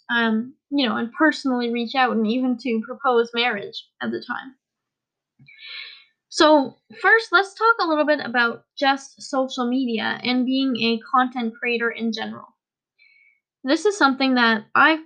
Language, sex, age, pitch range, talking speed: English, female, 10-29, 230-280 Hz, 150 wpm